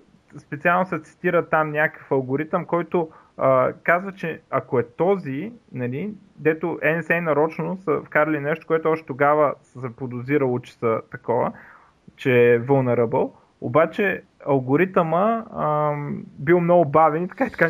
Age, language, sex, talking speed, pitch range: 20-39, Bulgarian, male, 140 wpm, 135-165 Hz